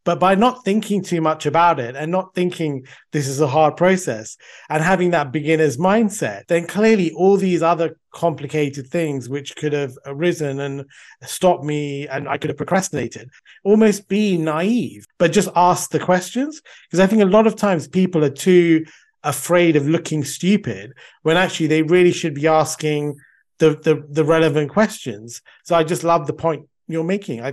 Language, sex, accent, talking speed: English, male, British, 180 wpm